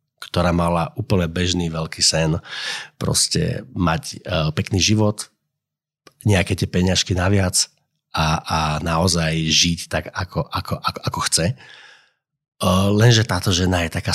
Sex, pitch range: male, 85-110 Hz